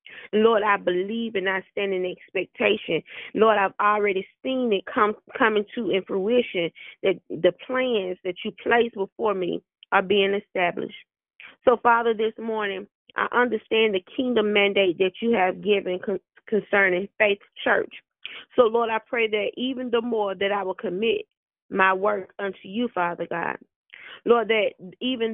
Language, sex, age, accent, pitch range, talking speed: English, female, 30-49, American, 195-230 Hz, 155 wpm